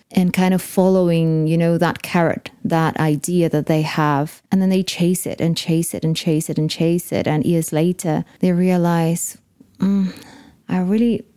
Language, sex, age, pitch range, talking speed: English, female, 20-39, 170-205 Hz, 185 wpm